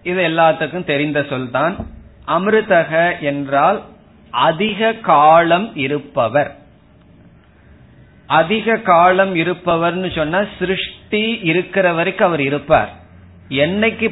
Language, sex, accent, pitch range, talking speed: Tamil, male, native, 150-190 Hz, 70 wpm